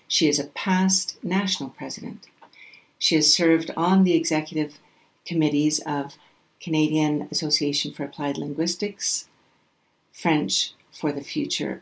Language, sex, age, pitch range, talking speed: English, female, 60-79, 150-175 Hz, 115 wpm